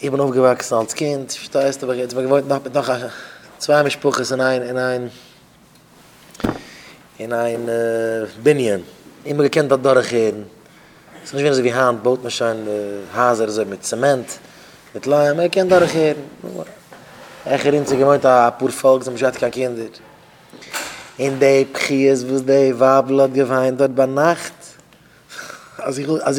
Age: 20-39